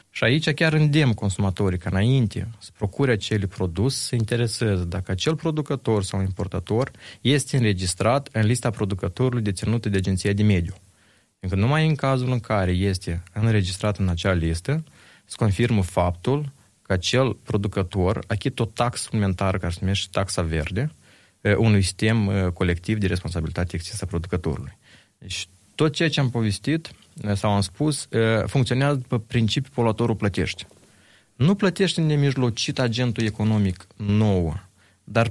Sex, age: male, 20-39